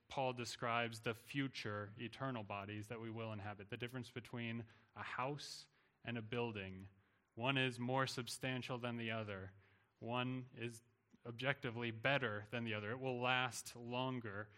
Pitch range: 110-130 Hz